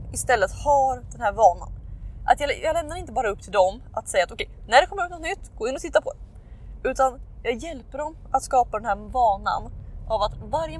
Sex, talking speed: female, 220 wpm